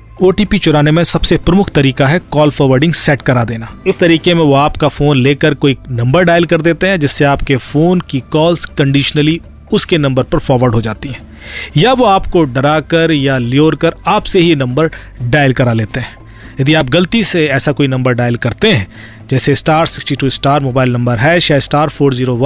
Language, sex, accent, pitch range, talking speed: Hindi, male, native, 130-165 Hz, 190 wpm